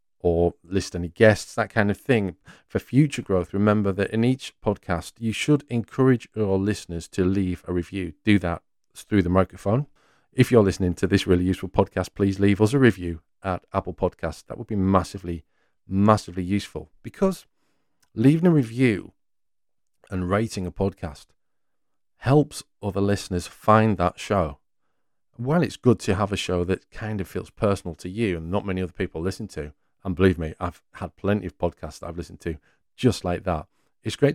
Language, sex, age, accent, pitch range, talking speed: English, male, 40-59, British, 90-110 Hz, 180 wpm